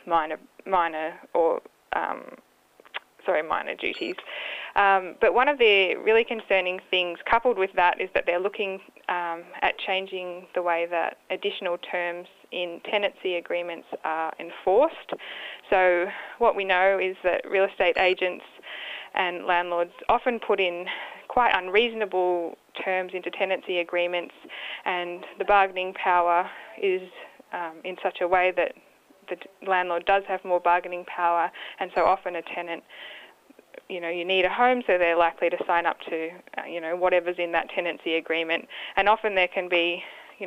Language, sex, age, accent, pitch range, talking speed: English, female, 10-29, Australian, 175-195 Hz, 155 wpm